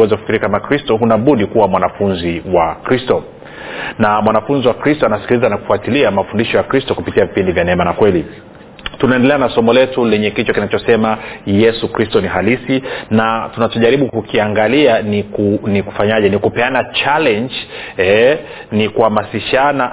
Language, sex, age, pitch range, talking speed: Swahili, male, 40-59, 105-125 Hz, 145 wpm